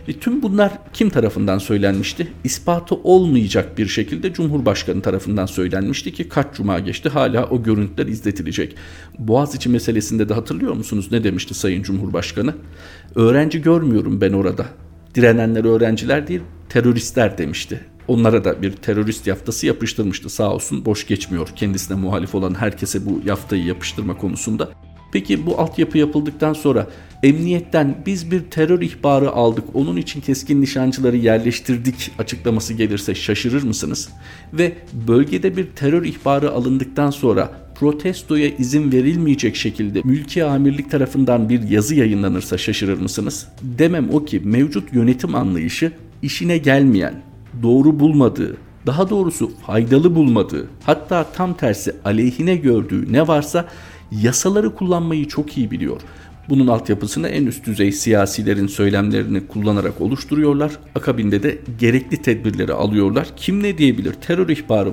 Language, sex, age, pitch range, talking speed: Turkish, male, 50-69, 100-145 Hz, 130 wpm